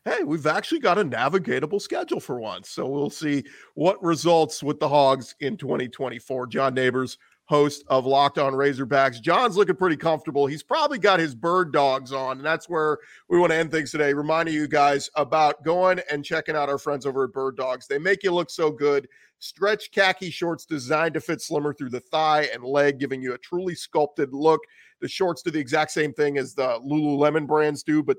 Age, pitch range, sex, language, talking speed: 40-59, 135-170 Hz, male, English, 205 wpm